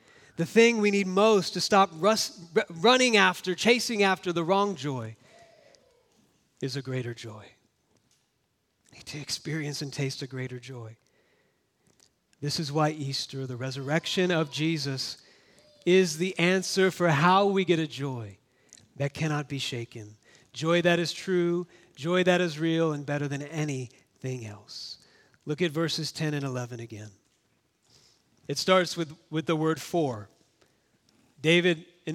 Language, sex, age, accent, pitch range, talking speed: English, male, 40-59, American, 140-185 Hz, 145 wpm